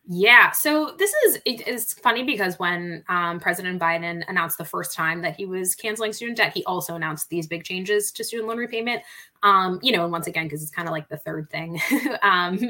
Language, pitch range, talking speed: English, 170-215 Hz, 220 wpm